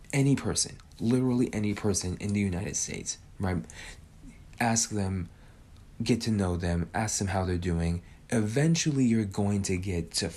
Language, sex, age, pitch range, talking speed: English, male, 20-39, 90-115 Hz, 155 wpm